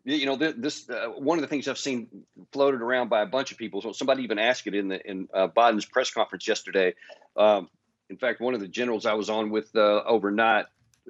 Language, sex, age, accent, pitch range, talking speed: English, male, 50-69, American, 105-130 Hz, 230 wpm